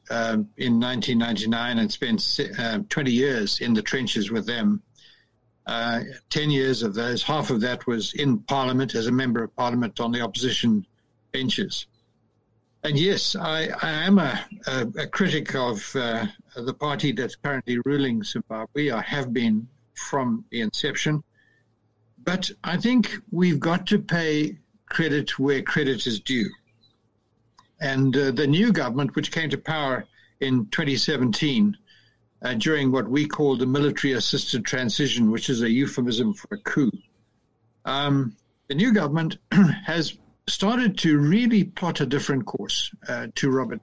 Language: English